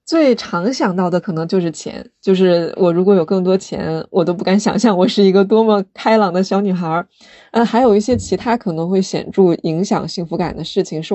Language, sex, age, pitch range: Chinese, female, 20-39, 170-205 Hz